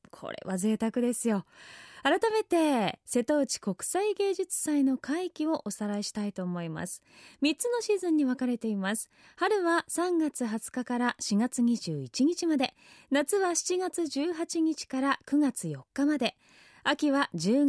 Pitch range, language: 225-330 Hz, Japanese